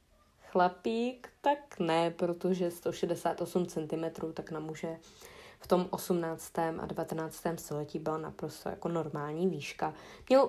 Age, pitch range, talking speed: 20-39, 165-195 Hz, 120 wpm